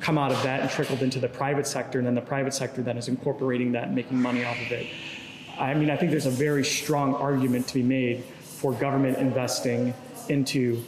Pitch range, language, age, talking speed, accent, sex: 130-150 Hz, English, 30-49, 225 wpm, American, male